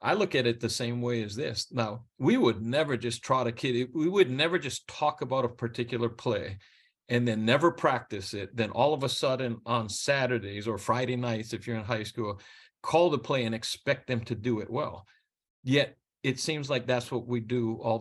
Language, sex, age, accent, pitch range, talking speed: English, male, 40-59, American, 110-130 Hz, 215 wpm